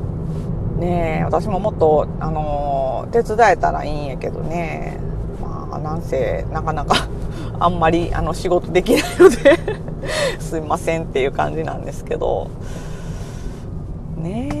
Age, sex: 40-59, female